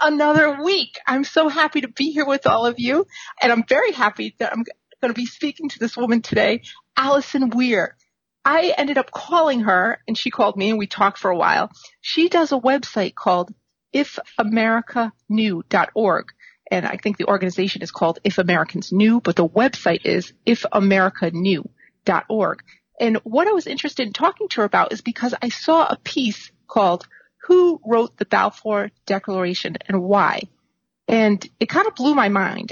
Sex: female